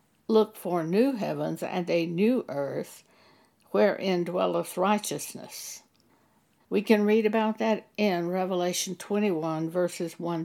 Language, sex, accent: English, female, American